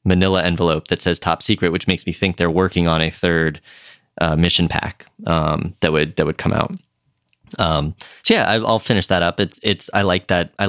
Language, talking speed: English, 215 wpm